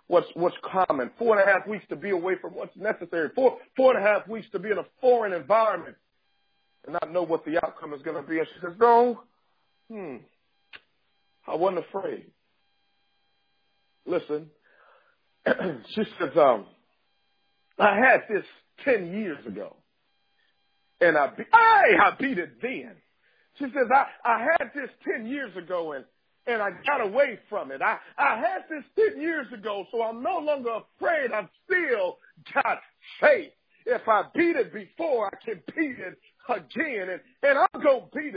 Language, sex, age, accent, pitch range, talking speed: English, male, 50-69, American, 210-325 Hz, 170 wpm